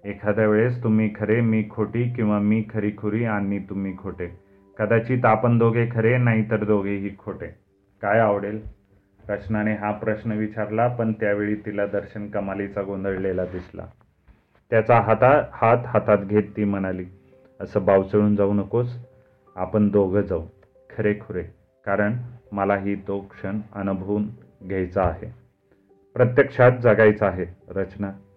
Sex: male